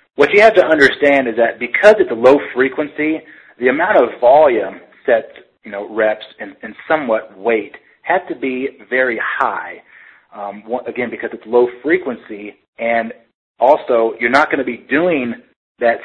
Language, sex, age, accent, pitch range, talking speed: English, male, 30-49, American, 120-155 Hz, 165 wpm